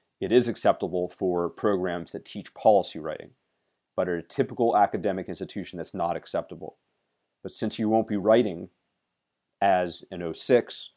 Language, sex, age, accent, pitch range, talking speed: English, male, 40-59, American, 90-115 Hz, 150 wpm